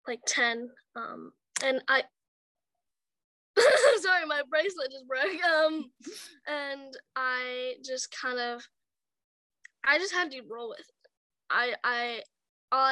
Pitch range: 245-290 Hz